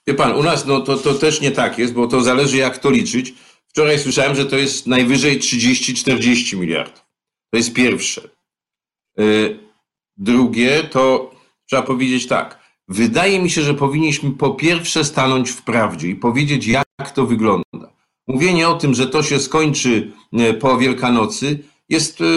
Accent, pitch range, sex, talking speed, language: native, 125-150 Hz, male, 155 wpm, Polish